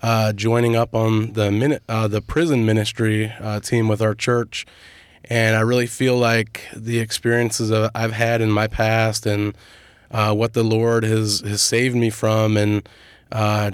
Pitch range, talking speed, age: 105-115 Hz, 175 wpm, 20-39